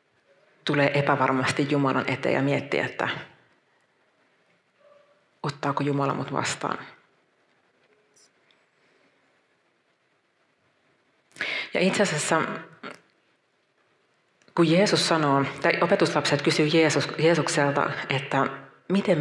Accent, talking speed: native, 70 wpm